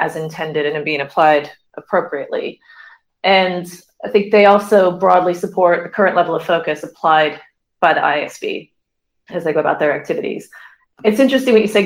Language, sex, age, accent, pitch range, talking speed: English, female, 30-49, American, 155-180 Hz, 165 wpm